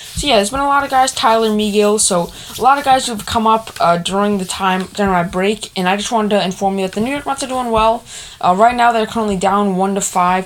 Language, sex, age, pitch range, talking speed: English, female, 20-39, 185-225 Hz, 285 wpm